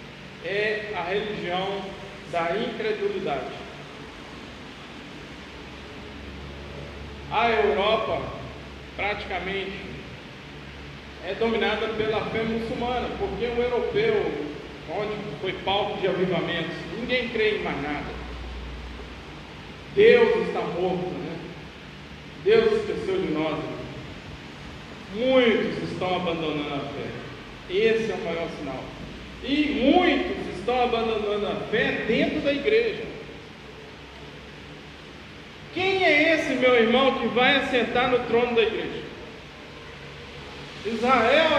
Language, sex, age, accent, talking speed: Portuguese, male, 40-59, Brazilian, 95 wpm